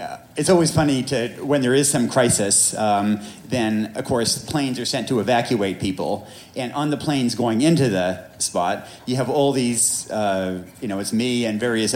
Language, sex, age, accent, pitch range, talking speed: English, male, 40-59, American, 95-125 Hz, 190 wpm